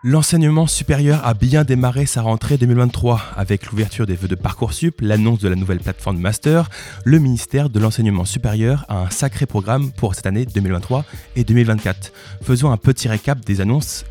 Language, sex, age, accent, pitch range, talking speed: French, male, 20-39, French, 100-130 Hz, 175 wpm